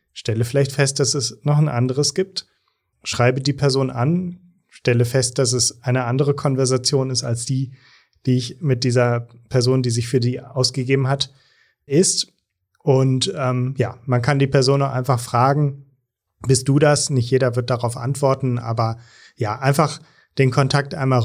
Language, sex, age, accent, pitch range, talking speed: German, male, 30-49, German, 120-140 Hz, 165 wpm